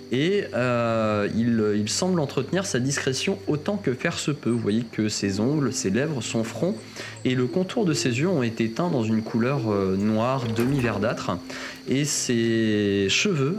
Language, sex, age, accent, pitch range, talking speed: French, male, 20-39, French, 110-145 Hz, 175 wpm